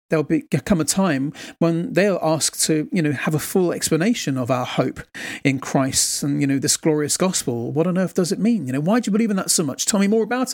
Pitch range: 150-190 Hz